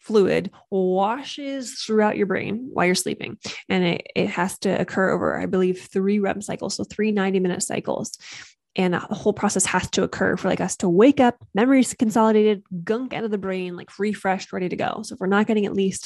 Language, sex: English, female